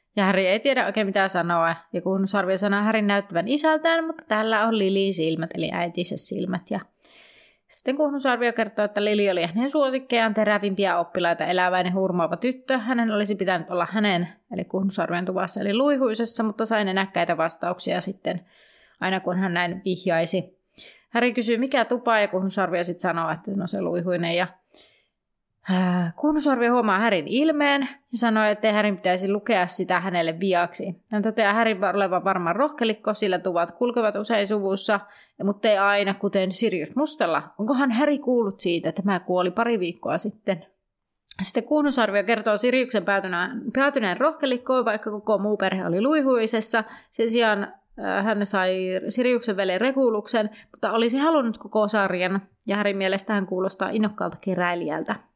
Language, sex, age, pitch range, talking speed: Finnish, female, 30-49, 185-230 Hz, 155 wpm